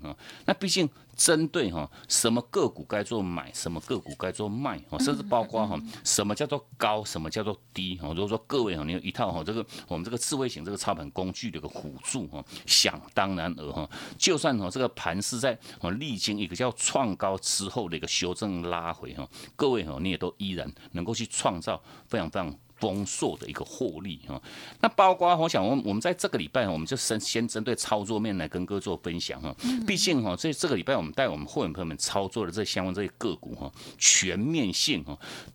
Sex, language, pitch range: male, Chinese, 90-125 Hz